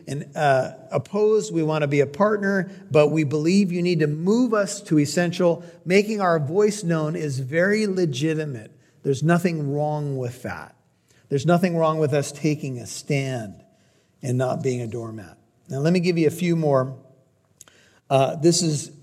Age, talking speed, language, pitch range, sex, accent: 50-69, 175 wpm, English, 140-175 Hz, male, American